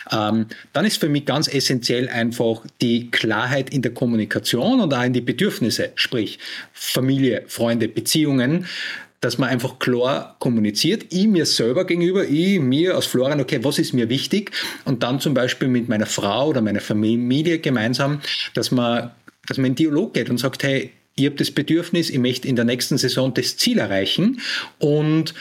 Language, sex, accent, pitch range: German, male, Austrian, 120-150 Hz